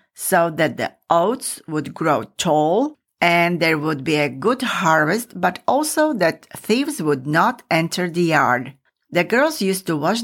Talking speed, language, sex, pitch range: 165 wpm, English, female, 155-215 Hz